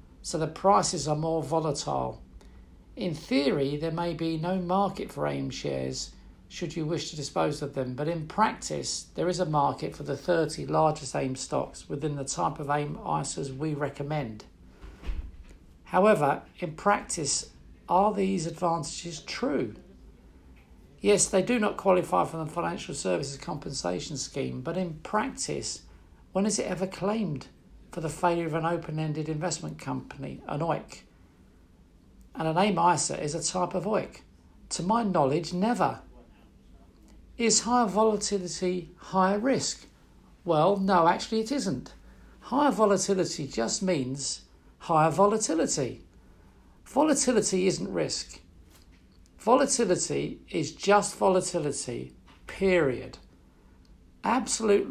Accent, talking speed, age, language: British, 130 wpm, 50-69, English